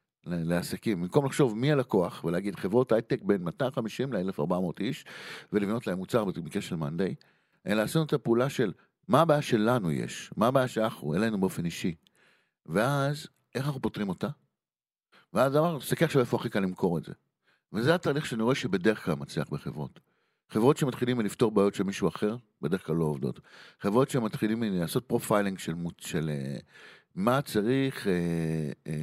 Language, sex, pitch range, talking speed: Hebrew, male, 95-135 Hz, 150 wpm